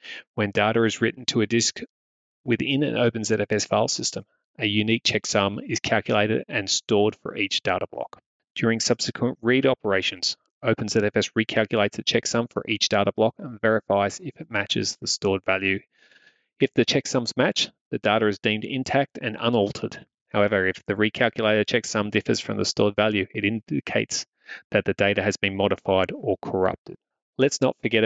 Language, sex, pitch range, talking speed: English, male, 105-115 Hz, 165 wpm